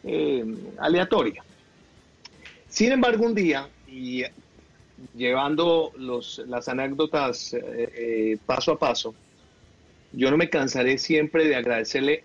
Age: 40-59